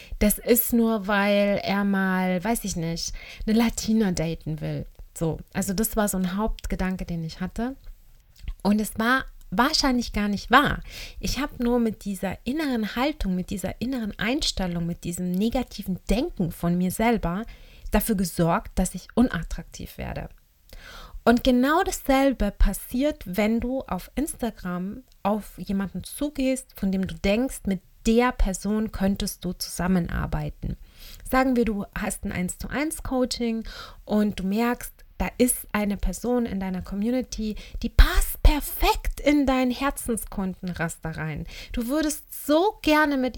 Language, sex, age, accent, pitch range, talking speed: German, female, 30-49, German, 190-250 Hz, 140 wpm